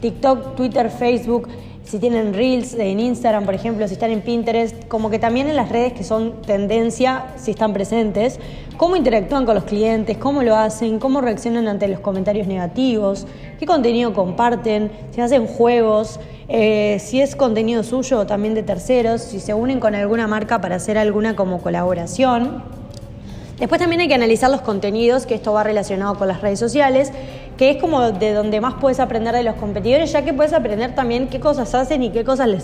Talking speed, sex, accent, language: 190 wpm, female, Argentinian, Spanish